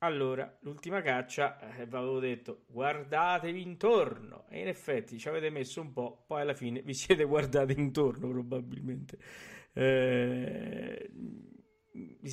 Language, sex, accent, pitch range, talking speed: Italian, male, native, 125-160 Hz, 125 wpm